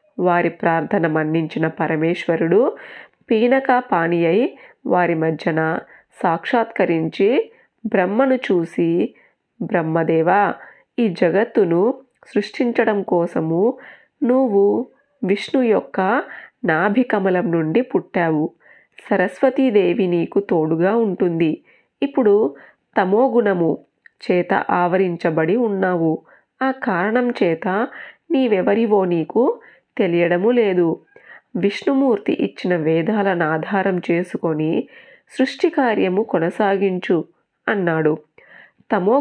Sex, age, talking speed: female, 30-49, 75 wpm